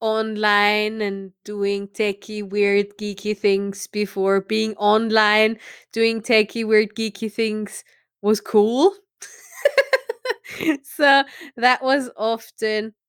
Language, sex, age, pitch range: English, female, 20-39, 195-245 Hz